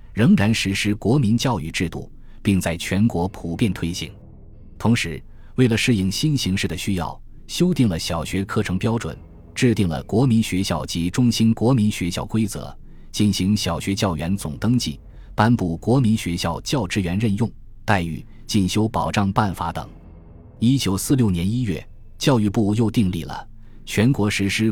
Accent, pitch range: native, 85-115 Hz